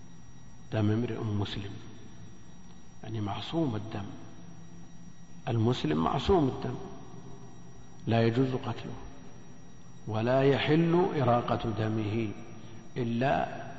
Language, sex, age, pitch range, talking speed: Arabic, male, 50-69, 110-130 Hz, 75 wpm